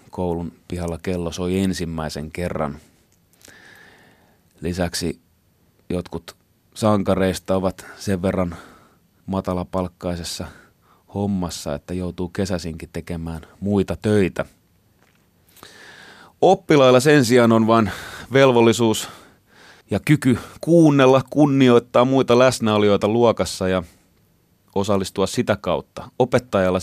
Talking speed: 85 wpm